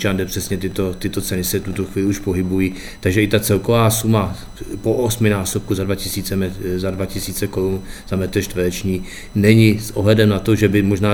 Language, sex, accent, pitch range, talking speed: Czech, male, native, 95-100 Hz, 160 wpm